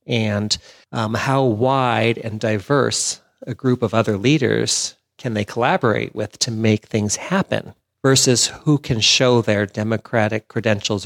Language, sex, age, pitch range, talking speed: English, male, 40-59, 105-130 Hz, 140 wpm